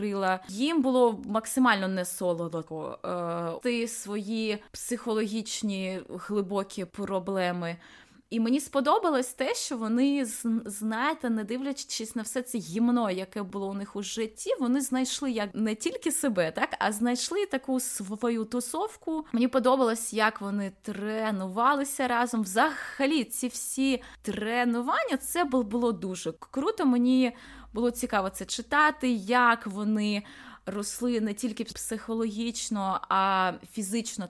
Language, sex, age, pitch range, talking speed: Ukrainian, female, 20-39, 205-255 Hz, 115 wpm